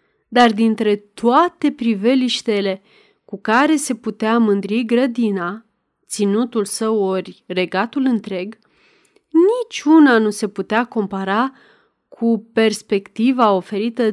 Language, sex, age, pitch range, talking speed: Romanian, female, 30-49, 205-255 Hz, 100 wpm